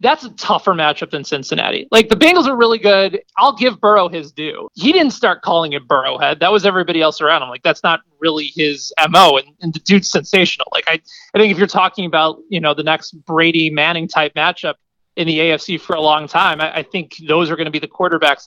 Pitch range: 165-235 Hz